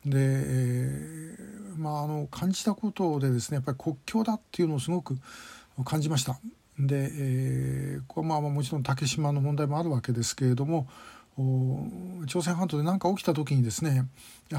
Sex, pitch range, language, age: male, 130-155 Hz, Japanese, 60-79